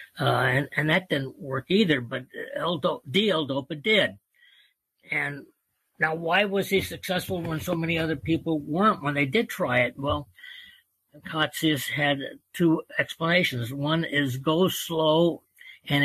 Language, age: English, 50-69